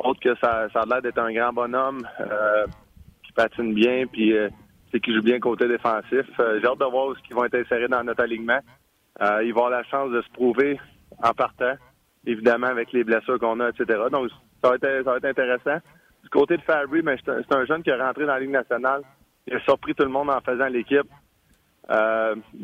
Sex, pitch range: male, 115-130 Hz